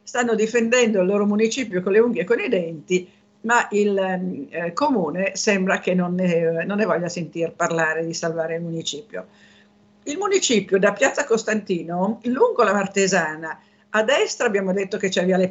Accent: native